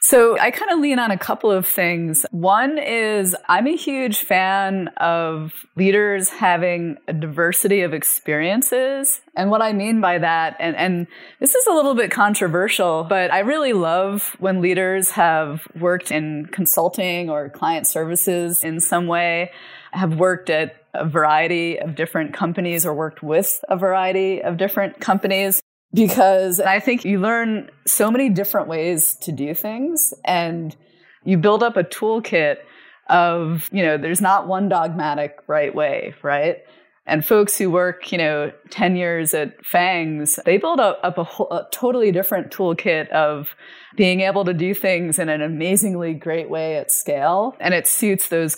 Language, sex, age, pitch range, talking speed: English, female, 20-39, 165-200 Hz, 165 wpm